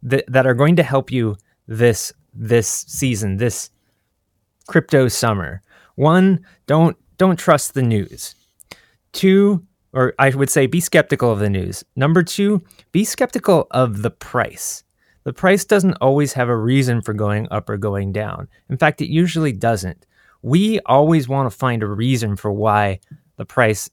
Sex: male